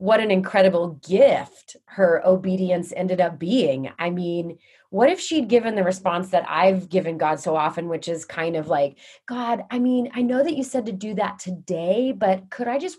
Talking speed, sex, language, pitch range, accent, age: 205 wpm, female, English, 165-215 Hz, American, 20-39